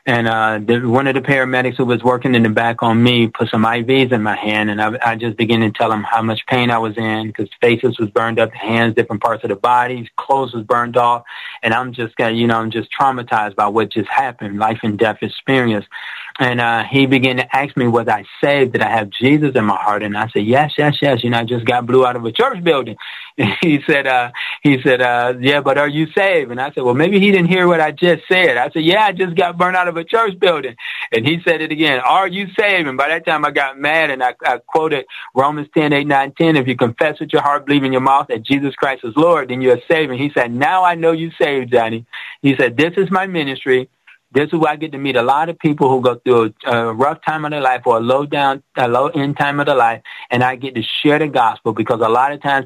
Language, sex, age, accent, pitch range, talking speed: English, male, 30-49, American, 115-150 Hz, 270 wpm